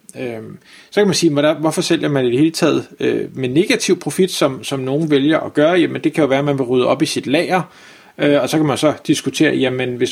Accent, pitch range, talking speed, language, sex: native, 140-185 Hz, 260 wpm, Danish, male